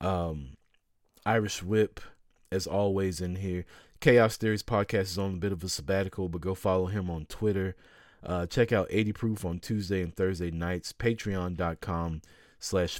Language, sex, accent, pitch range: English, male, American, 90-115 Hz